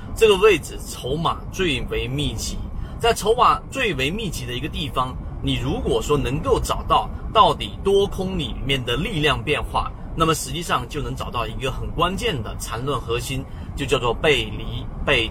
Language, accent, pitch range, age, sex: Chinese, native, 120-180 Hz, 30-49, male